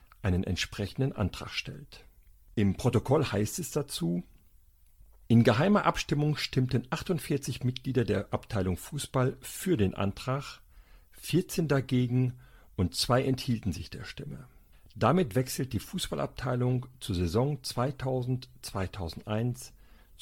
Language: German